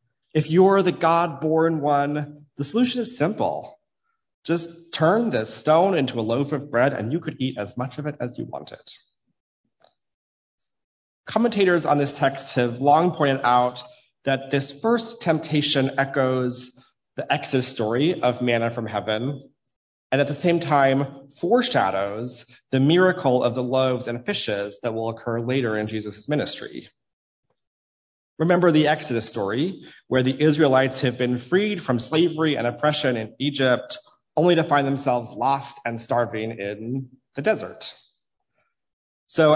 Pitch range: 120-155 Hz